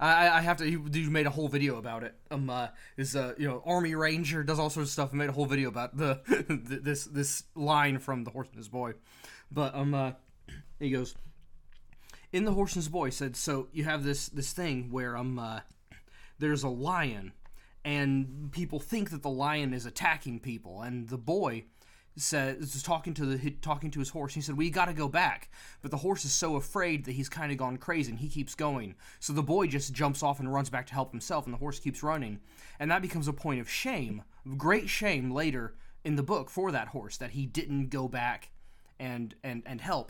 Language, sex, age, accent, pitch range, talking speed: English, male, 20-39, American, 125-150 Hz, 230 wpm